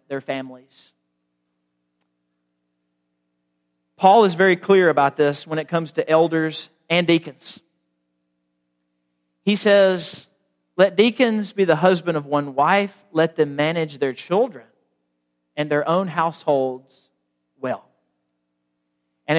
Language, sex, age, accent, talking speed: English, male, 40-59, American, 110 wpm